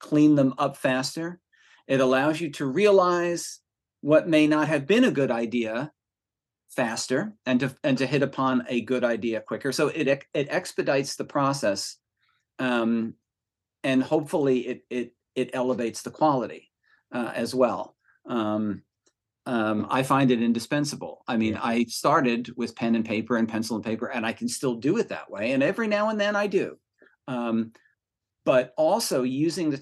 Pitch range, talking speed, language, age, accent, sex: 110-140 Hz, 170 wpm, English, 40-59, American, male